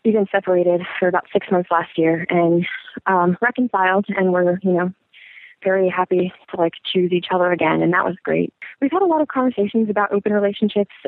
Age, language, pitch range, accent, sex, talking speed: 20-39, English, 180-215 Hz, American, female, 200 wpm